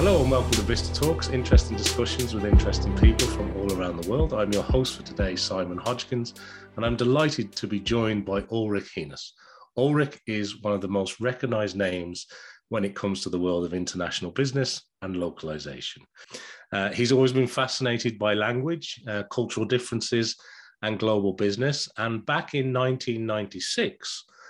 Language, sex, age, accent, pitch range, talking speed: English, male, 30-49, British, 95-125 Hz, 165 wpm